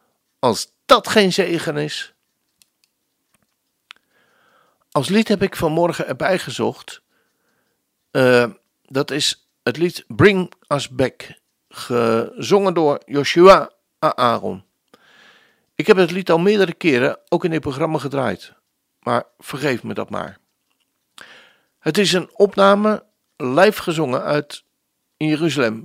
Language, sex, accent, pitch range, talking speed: Dutch, male, Dutch, 140-190 Hz, 115 wpm